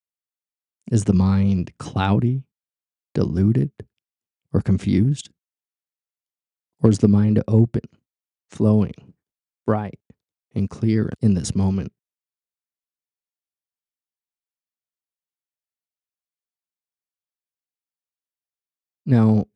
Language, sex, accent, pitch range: English, male, American, 100-120 Hz